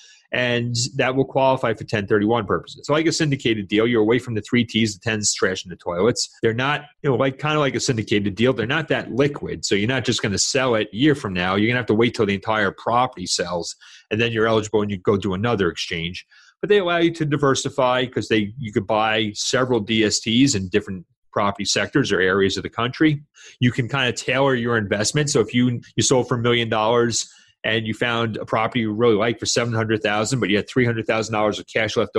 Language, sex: English, male